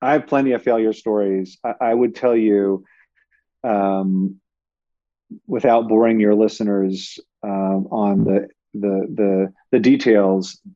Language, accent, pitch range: English, American, 100-125 Hz